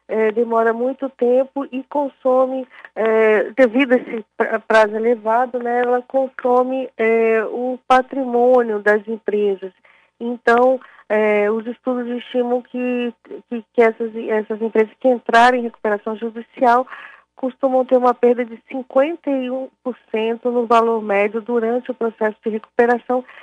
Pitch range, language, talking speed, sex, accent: 215-250 Hz, Portuguese, 120 wpm, female, Brazilian